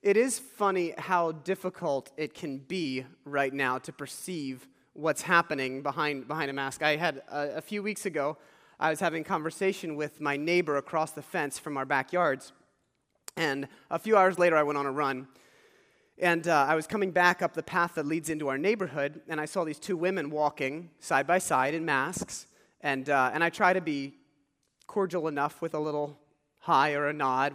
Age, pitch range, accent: 30-49, 140-175 Hz, American